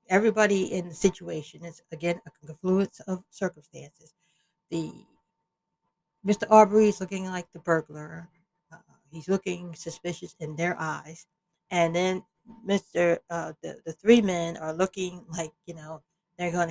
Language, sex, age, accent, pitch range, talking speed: English, female, 60-79, American, 170-215 Hz, 145 wpm